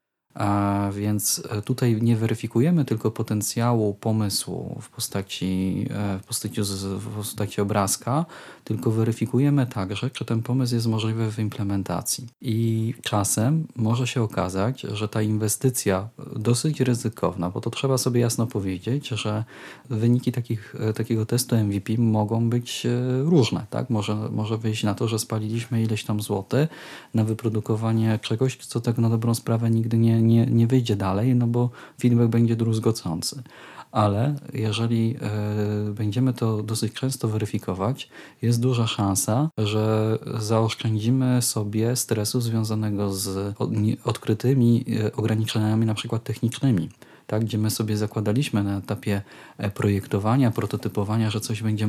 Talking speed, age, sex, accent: 130 wpm, 30-49, male, native